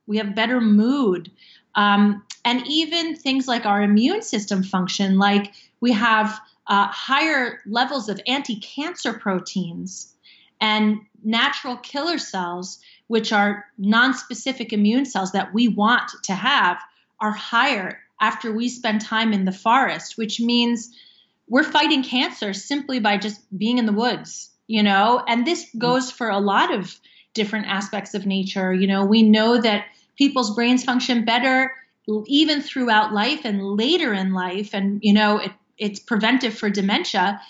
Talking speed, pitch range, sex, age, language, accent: 150 wpm, 205-250 Hz, female, 30-49, English, American